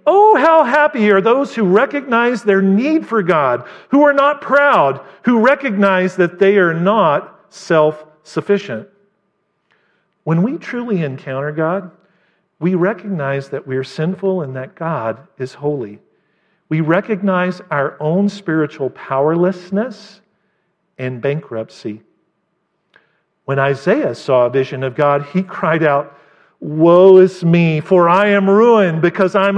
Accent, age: American, 50-69